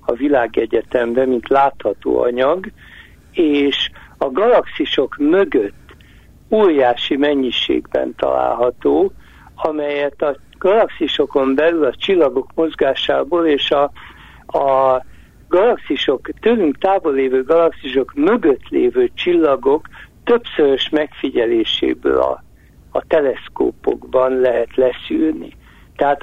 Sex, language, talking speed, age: male, Hungarian, 85 wpm, 60-79